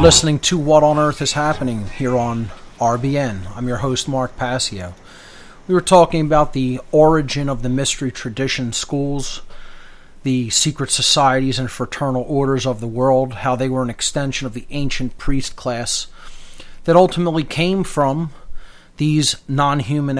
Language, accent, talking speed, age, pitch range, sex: English, American, 150 wpm, 40-59, 125-150 Hz, male